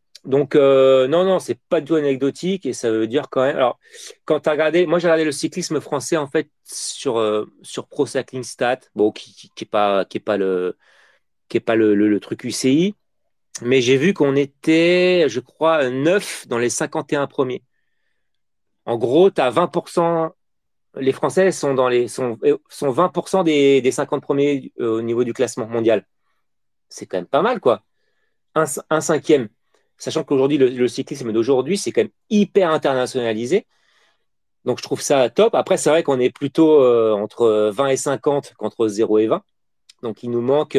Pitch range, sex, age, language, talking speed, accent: 115-165 Hz, male, 40-59, French, 185 wpm, French